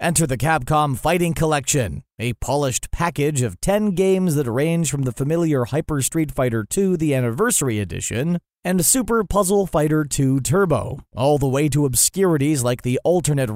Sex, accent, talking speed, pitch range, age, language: male, American, 165 wpm, 130-175 Hz, 30-49, English